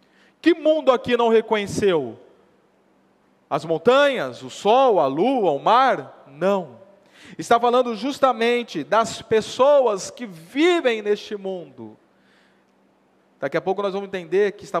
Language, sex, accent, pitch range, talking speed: Portuguese, male, Brazilian, 195-255 Hz, 125 wpm